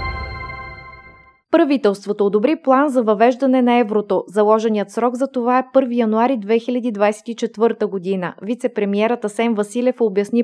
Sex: female